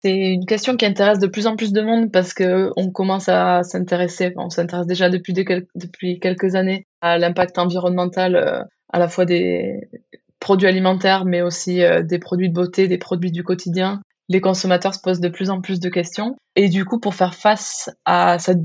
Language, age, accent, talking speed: French, 20-39, French, 190 wpm